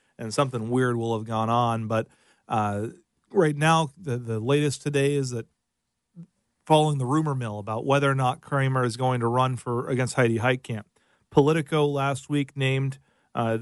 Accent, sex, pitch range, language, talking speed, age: American, male, 120-145 Hz, English, 170 wpm, 40-59